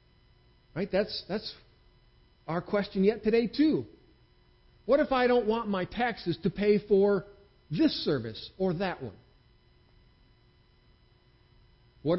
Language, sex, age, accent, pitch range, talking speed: English, male, 40-59, American, 145-230 Hz, 120 wpm